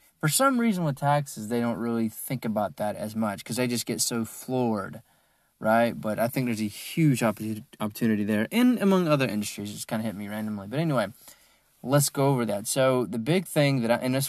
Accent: American